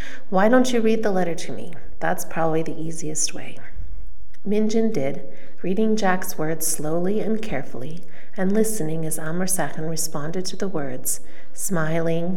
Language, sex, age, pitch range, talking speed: English, female, 40-59, 155-210 Hz, 150 wpm